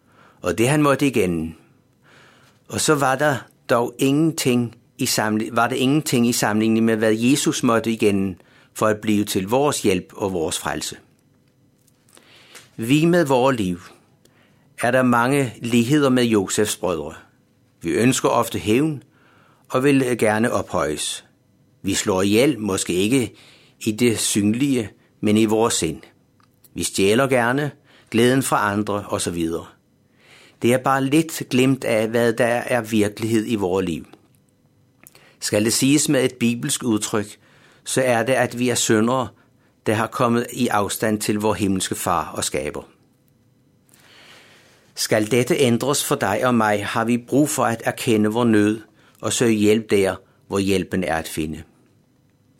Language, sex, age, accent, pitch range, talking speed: Danish, male, 60-79, native, 105-130 Hz, 145 wpm